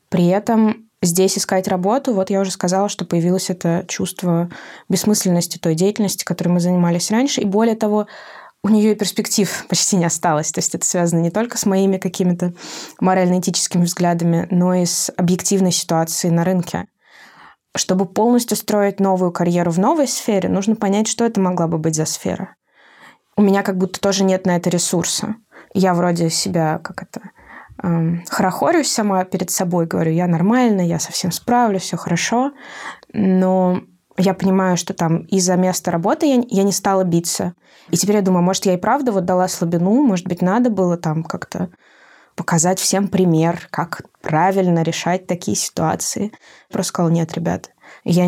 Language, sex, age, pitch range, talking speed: Russian, female, 20-39, 175-200 Hz, 165 wpm